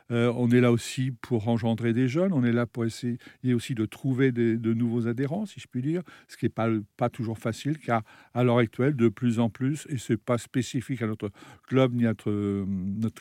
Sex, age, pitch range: male, 60-79, 115-135 Hz